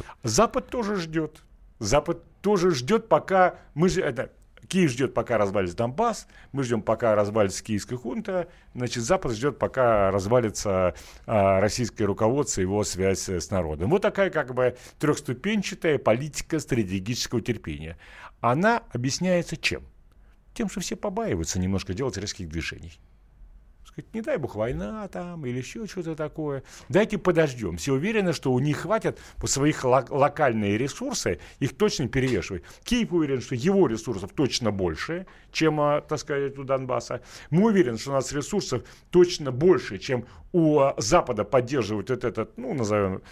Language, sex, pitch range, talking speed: Russian, male, 110-170 Hz, 145 wpm